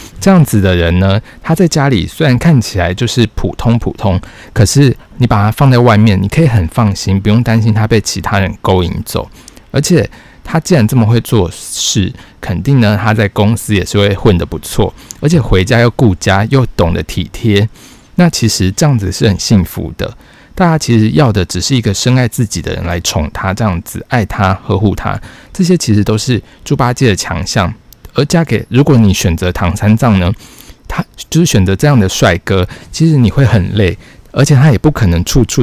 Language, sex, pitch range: Chinese, male, 95-125 Hz